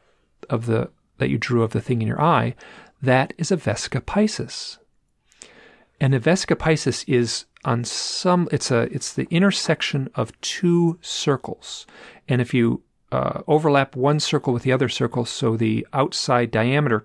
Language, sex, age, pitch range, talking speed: English, male, 40-59, 110-145 Hz, 160 wpm